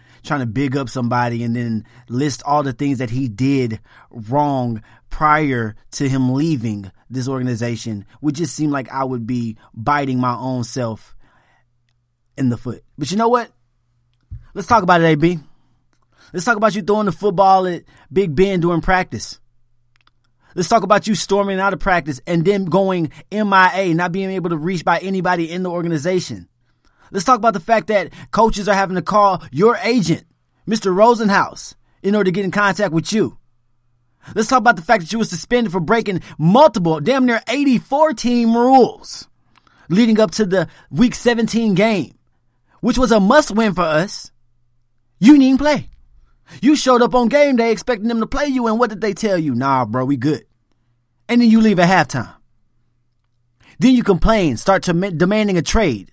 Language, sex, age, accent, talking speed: English, male, 20-39, American, 180 wpm